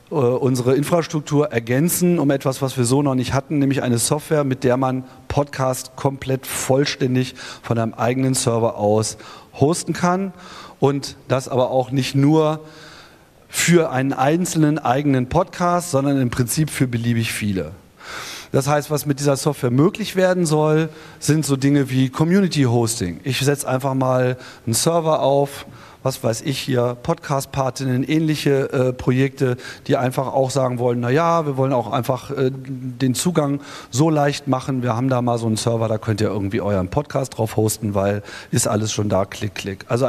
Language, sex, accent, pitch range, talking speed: German, male, German, 120-145 Hz, 170 wpm